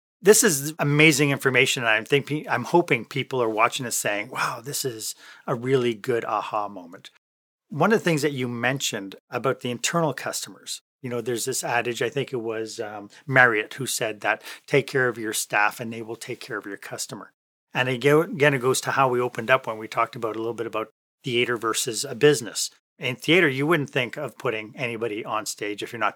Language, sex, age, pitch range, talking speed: English, male, 40-59, 125-155 Hz, 215 wpm